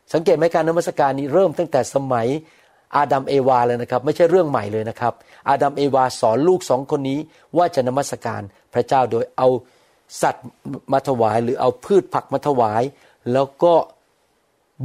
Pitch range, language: 125-170 Hz, Thai